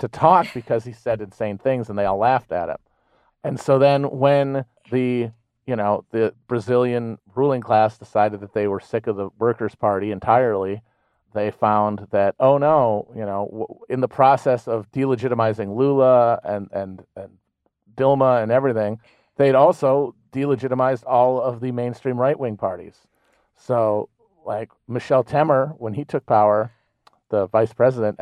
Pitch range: 110-130 Hz